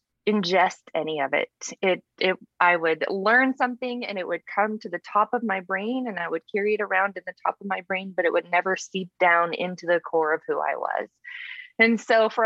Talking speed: 230 wpm